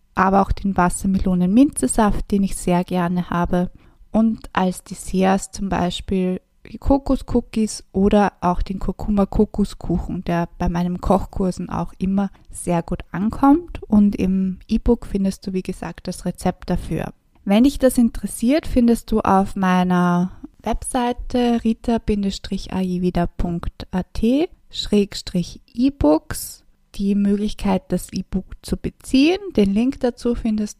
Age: 20-39